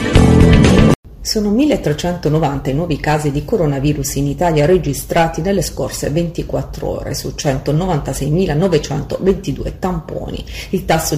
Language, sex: Italian, female